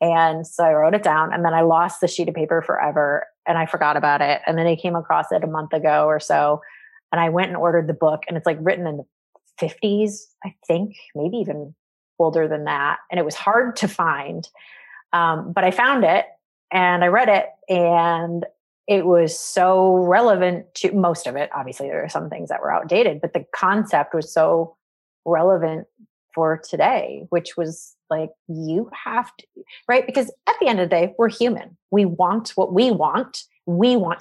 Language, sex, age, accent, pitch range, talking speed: English, female, 30-49, American, 165-205 Hz, 200 wpm